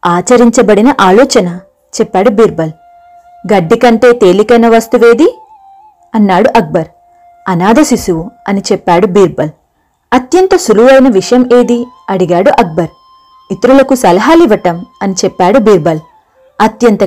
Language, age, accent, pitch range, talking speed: Telugu, 30-49, native, 195-290 Hz, 100 wpm